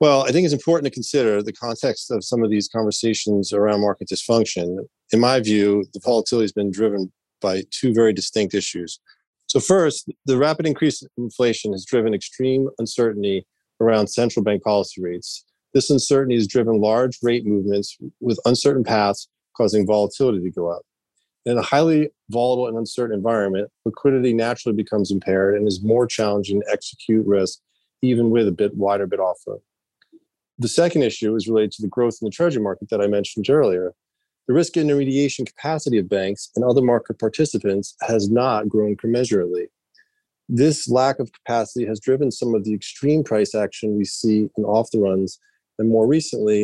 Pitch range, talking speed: 105-130 Hz, 175 wpm